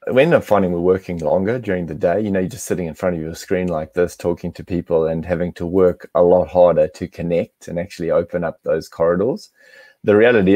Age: 20-39